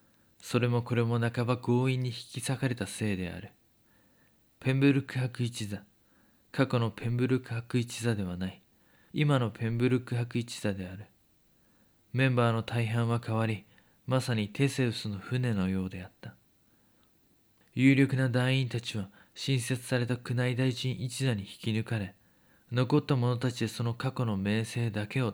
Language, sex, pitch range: Japanese, male, 105-130 Hz